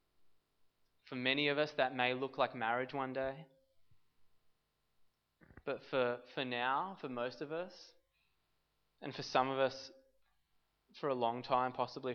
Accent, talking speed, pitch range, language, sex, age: Australian, 145 wpm, 120-145 Hz, English, male, 20-39